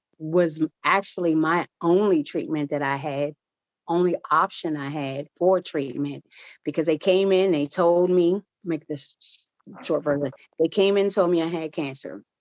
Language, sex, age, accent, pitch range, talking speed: English, female, 30-49, American, 150-185 Hz, 160 wpm